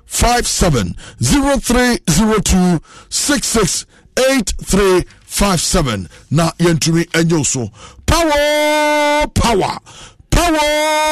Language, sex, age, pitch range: English, male, 60-79, 165-250 Hz